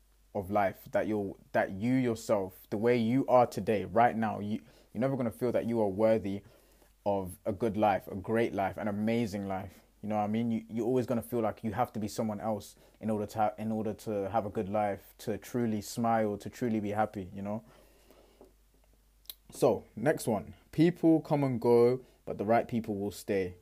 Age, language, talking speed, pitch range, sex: 20-39, English, 210 wpm, 105-125 Hz, male